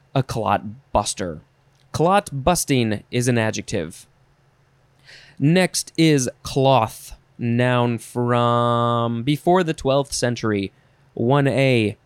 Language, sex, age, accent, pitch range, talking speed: English, male, 20-39, American, 120-155 Hz, 90 wpm